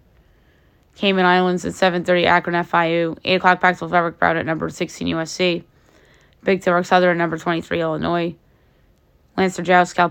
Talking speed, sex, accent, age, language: 150 wpm, female, American, 20-39, English